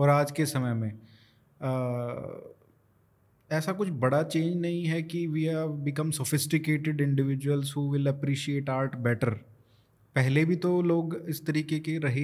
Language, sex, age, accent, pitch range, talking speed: Hindi, male, 20-39, native, 135-170 Hz, 150 wpm